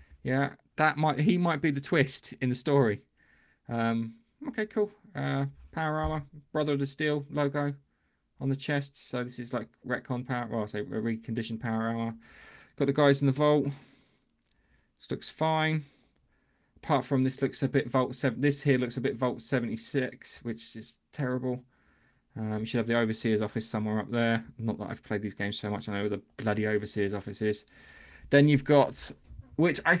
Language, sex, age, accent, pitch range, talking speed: English, male, 20-39, British, 115-140 Hz, 190 wpm